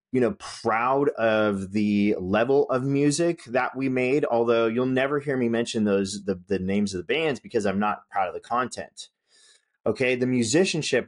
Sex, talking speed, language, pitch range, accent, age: male, 185 wpm, English, 105-160 Hz, American, 30-49